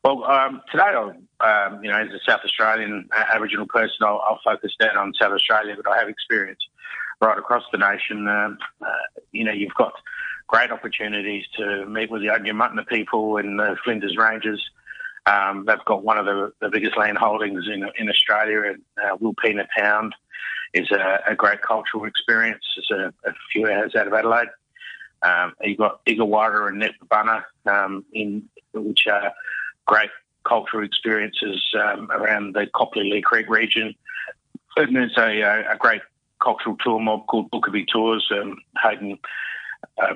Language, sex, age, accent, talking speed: English, male, 30-49, Australian, 170 wpm